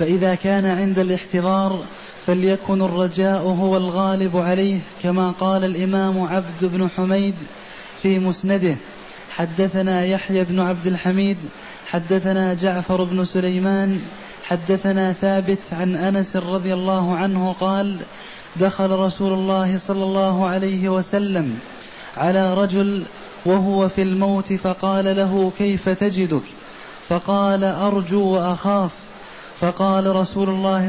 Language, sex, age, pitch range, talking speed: Arabic, male, 20-39, 185-195 Hz, 110 wpm